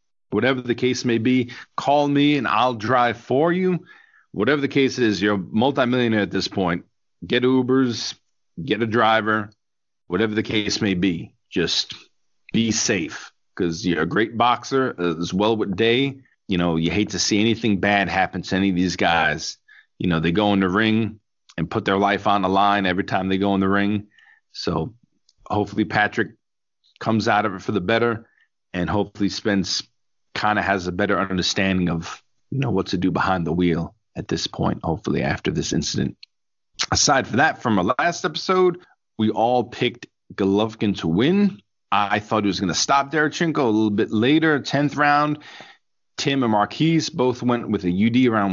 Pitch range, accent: 100-130 Hz, American